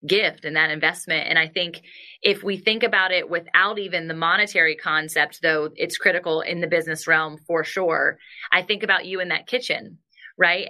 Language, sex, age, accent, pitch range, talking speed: English, female, 20-39, American, 170-235 Hz, 190 wpm